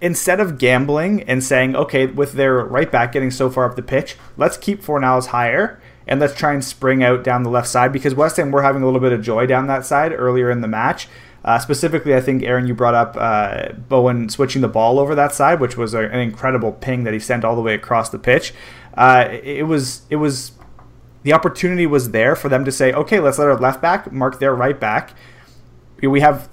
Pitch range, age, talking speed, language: 125-145 Hz, 30-49, 225 wpm, English